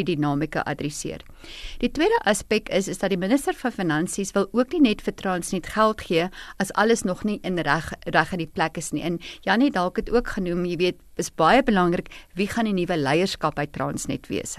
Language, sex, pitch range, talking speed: English, female, 170-220 Hz, 210 wpm